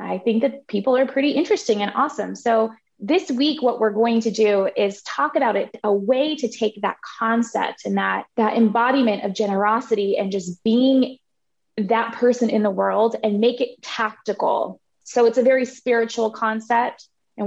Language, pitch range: English, 205-250 Hz